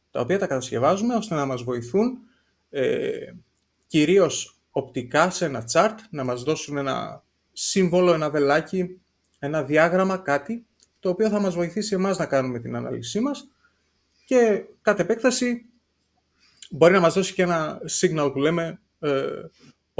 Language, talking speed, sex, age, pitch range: Greek, 145 wpm, male, 30-49, 130-195 Hz